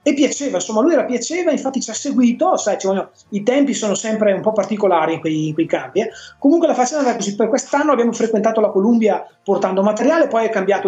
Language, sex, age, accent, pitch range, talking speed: Italian, male, 30-49, native, 180-245 Hz, 230 wpm